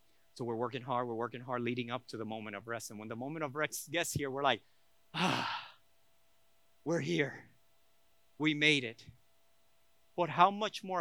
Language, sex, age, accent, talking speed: English, male, 30-49, American, 185 wpm